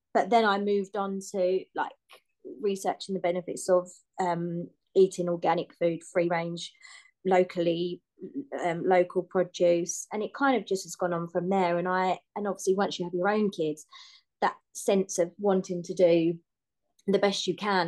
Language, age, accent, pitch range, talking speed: English, 20-39, British, 175-200 Hz, 170 wpm